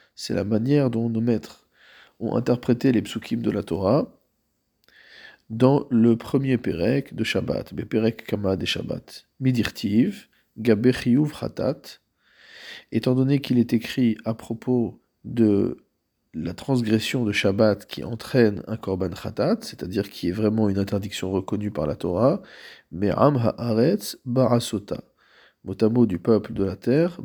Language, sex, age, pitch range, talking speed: French, male, 40-59, 100-120 Hz, 140 wpm